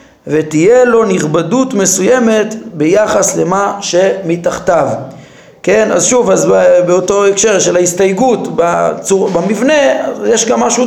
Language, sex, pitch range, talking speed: Hebrew, male, 180-230 Hz, 110 wpm